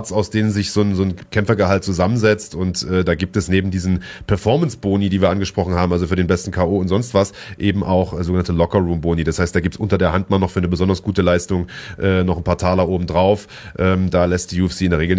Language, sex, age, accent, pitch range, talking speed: German, male, 30-49, German, 90-105 Hz, 250 wpm